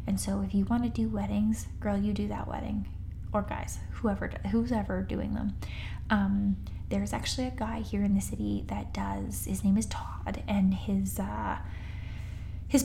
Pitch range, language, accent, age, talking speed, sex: 95-110 Hz, English, American, 10-29, 180 wpm, female